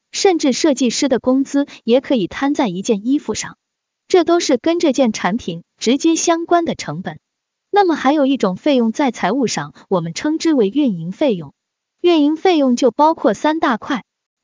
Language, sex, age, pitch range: Chinese, female, 20-39, 205-300 Hz